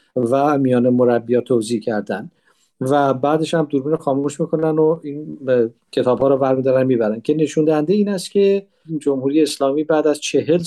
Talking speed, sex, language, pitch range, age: 155 wpm, male, Persian, 130-155 Hz, 50-69